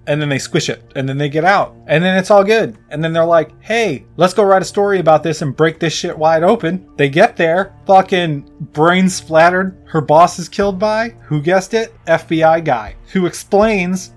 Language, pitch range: English, 140-185 Hz